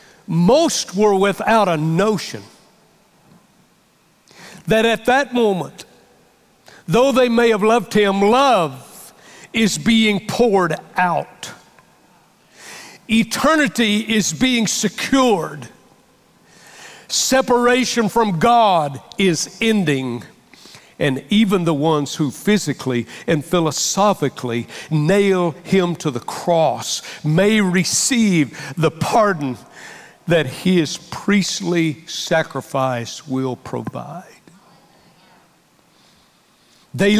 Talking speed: 85 wpm